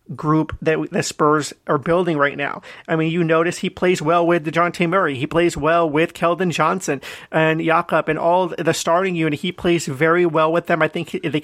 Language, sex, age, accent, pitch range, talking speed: English, male, 30-49, American, 160-185 Hz, 220 wpm